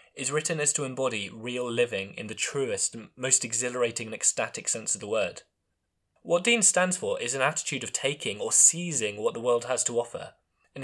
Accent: British